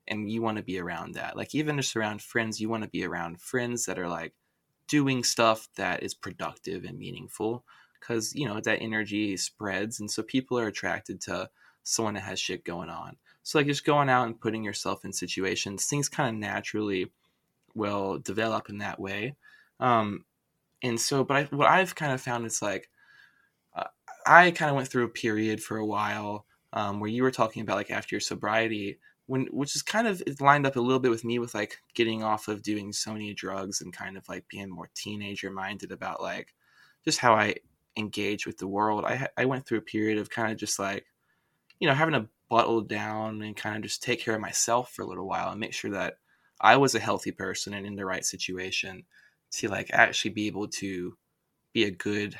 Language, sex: English, male